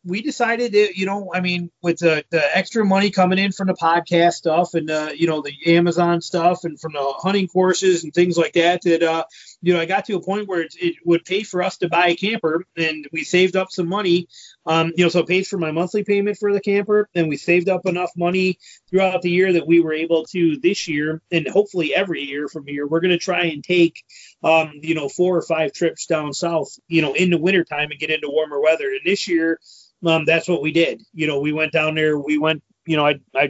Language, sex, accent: English, male, American